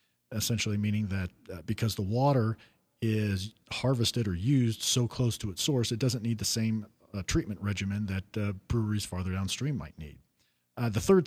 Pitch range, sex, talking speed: 100-120 Hz, male, 180 wpm